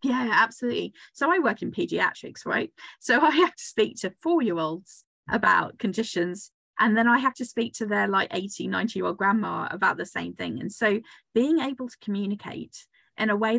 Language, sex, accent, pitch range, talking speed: English, female, British, 195-245 Hz, 205 wpm